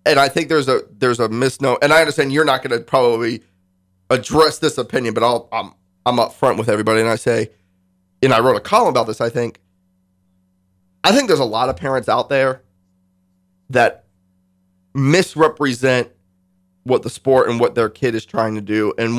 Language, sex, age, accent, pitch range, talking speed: English, male, 30-49, American, 110-175 Hz, 190 wpm